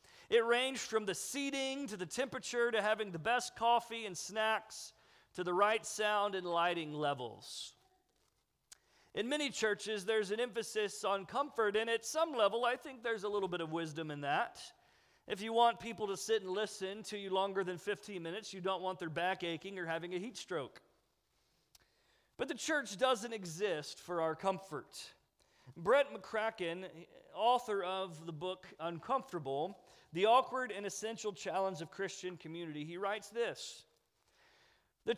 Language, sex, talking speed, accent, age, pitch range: English, male, 165 wpm, American, 40-59, 175-240 Hz